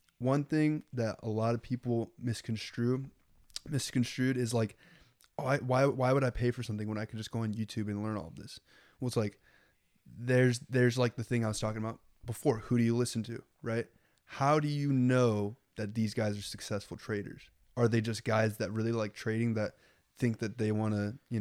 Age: 20-39